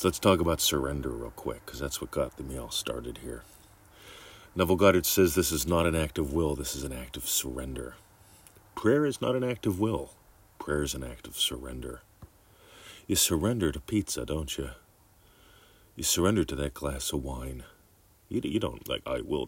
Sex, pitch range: male, 70-90 Hz